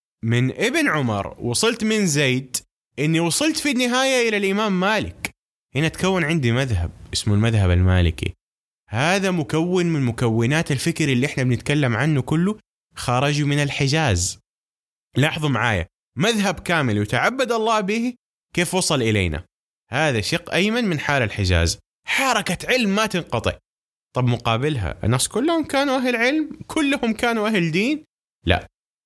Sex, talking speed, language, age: male, 135 wpm, Arabic, 20-39